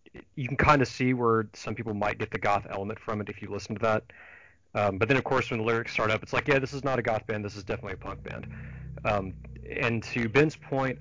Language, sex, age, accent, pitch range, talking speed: English, male, 30-49, American, 100-115 Hz, 275 wpm